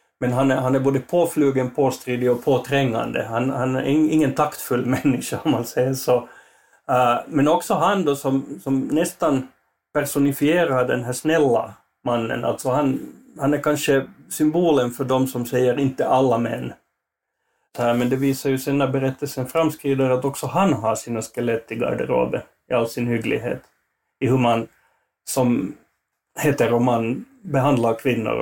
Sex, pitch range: male, 125-145 Hz